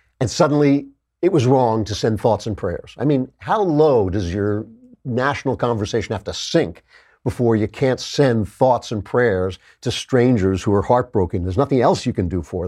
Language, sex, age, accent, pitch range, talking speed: English, male, 50-69, American, 105-125 Hz, 190 wpm